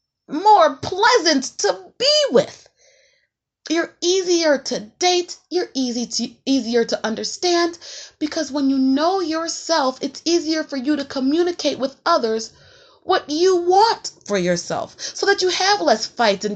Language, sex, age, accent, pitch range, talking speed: English, female, 30-49, American, 220-340 Hz, 145 wpm